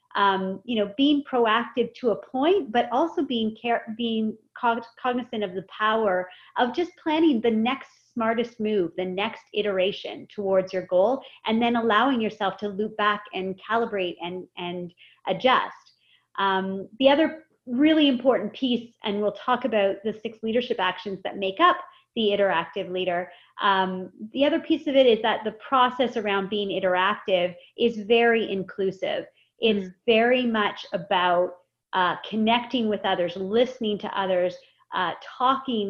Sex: female